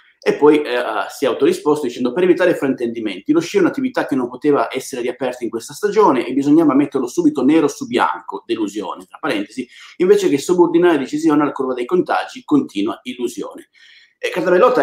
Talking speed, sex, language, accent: 180 wpm, male, Italian, native